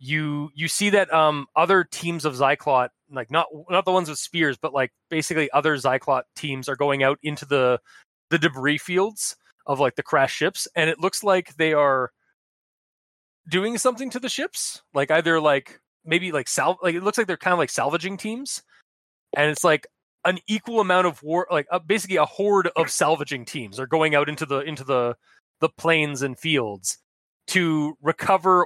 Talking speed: 190 wpm